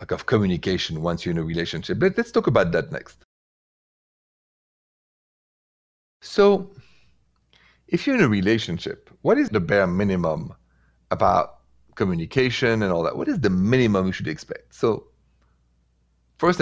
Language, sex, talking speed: English, male, 140 wpm